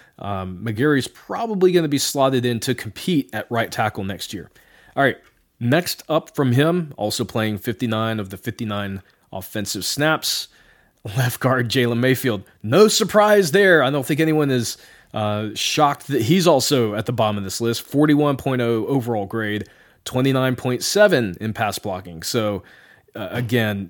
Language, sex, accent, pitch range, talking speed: English, male, American, 110-140 Hz, 155 wpm